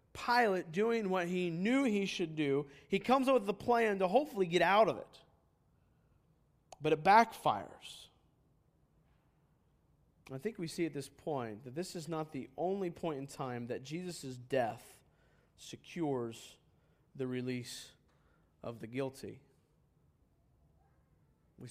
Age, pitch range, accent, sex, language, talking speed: 40-59, 120-170 Hz, American, male, English, 135 wpm